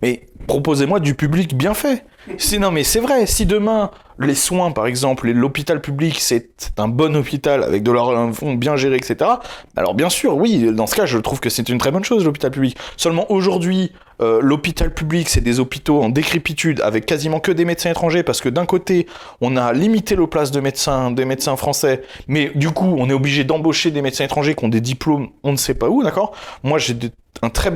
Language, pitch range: French, 125-165 Hz